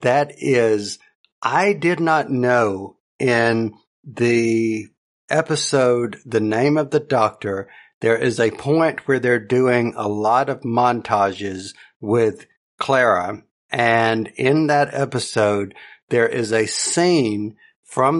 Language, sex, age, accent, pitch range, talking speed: English, male, 50-69, American, 110-130 Hz, 120 wpm